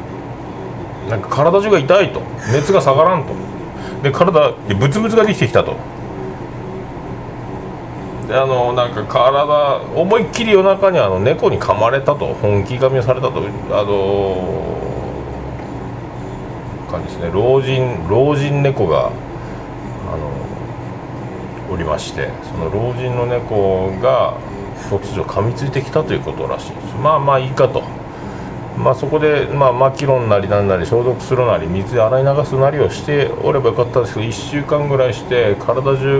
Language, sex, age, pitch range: Japanese, male, 40-59, 105-140 Hz